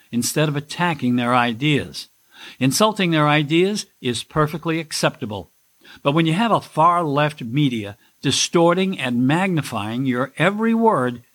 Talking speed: 125 wpm